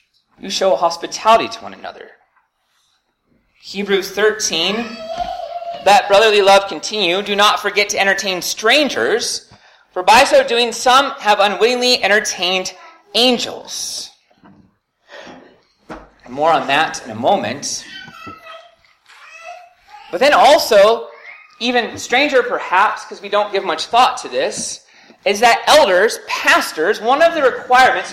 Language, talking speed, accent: English, 115 wpm, American